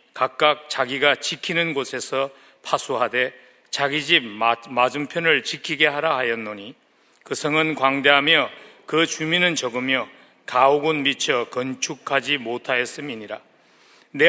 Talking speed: 90 wpm